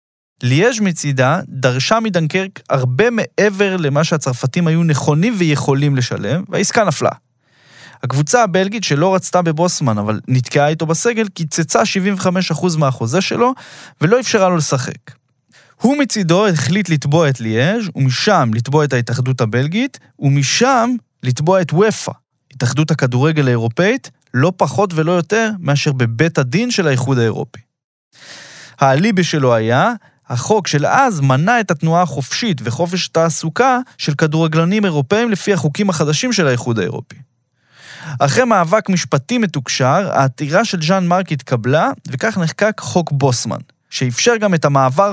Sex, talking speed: male, 130 wpm